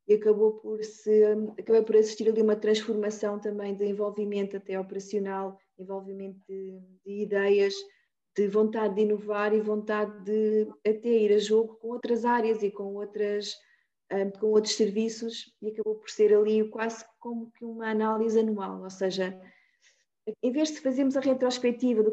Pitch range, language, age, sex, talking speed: 205-225 Hz, Portuguese, 20-39, female, 160 wpm